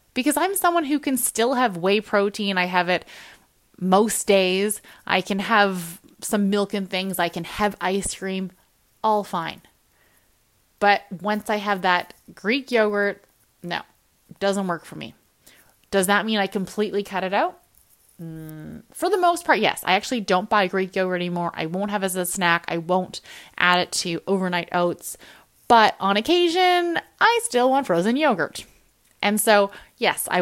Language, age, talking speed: English, 20-39, 175 wpm